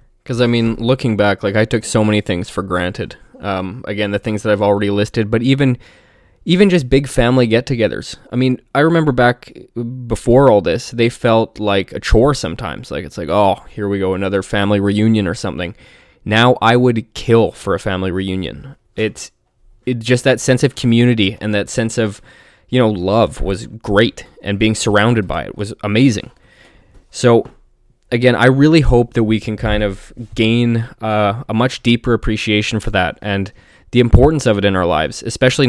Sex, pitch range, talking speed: male, 105-120 Hz, 190 wpm